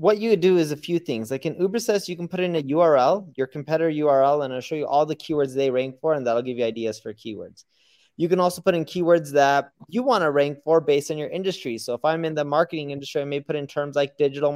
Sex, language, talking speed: male, English, 270 wpm